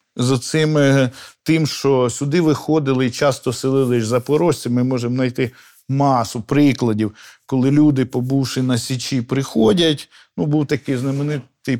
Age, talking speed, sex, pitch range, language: 50-69, 125 wpm, male, 125-160 Hz, Ukrainian